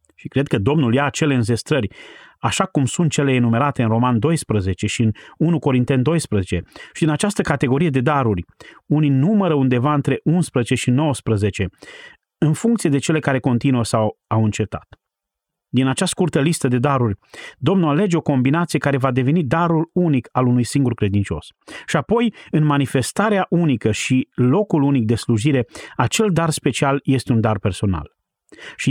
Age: 30-49